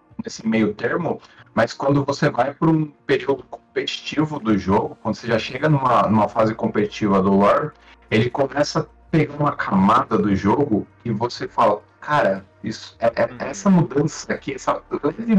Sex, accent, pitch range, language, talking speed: male, Brazilian, 105-130 Hz, Portuguese, 170 wpm